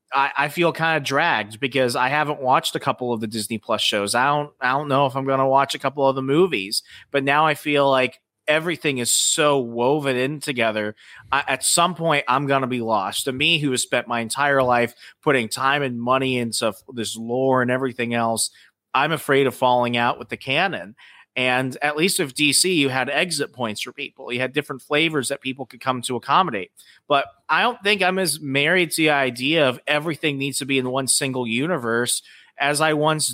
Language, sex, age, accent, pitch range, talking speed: English, male, 30-49, American, 125-150 Hz, 215 wpm